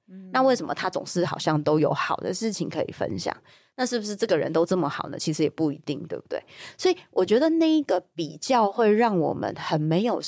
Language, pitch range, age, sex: Chinese, 160-200 Hz, 20-39, female